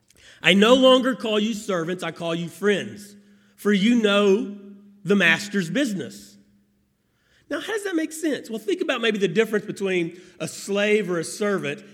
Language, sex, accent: English, male, American